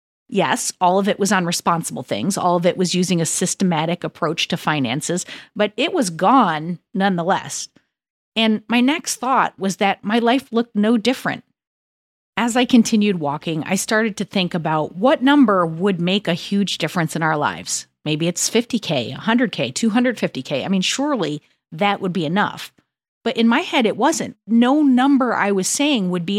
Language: English